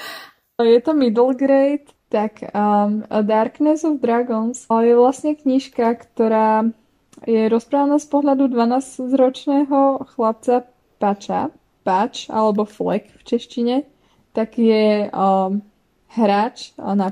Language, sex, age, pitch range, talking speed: Slovak, female, 20-39, 210-245 Hz, 105 wpm